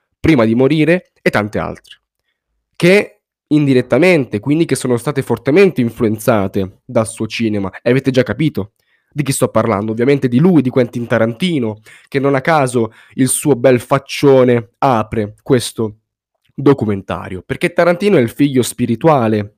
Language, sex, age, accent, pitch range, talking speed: Italian, male, 10-29, native, 110-140 Hz, 145 wpm